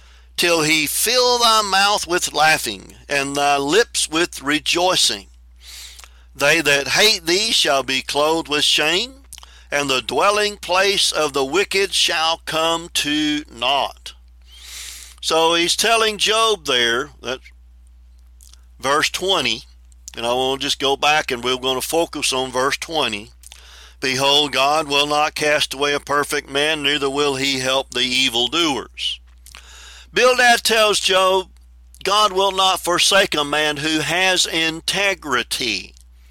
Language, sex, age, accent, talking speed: English, male, 50-69, American, 135 wpm